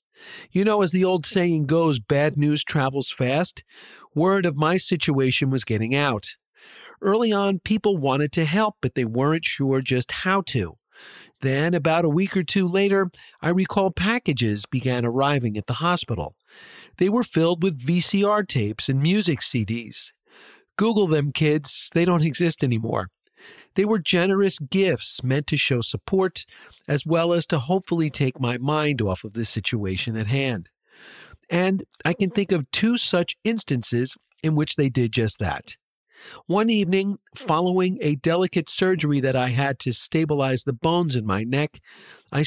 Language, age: English, 50-69